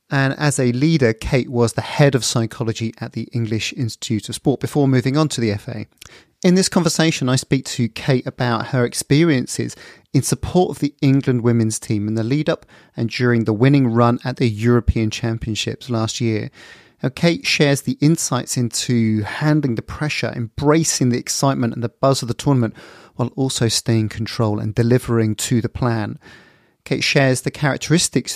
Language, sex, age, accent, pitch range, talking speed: English, male, 30-49, British, 115-140 Hz, 180 wpm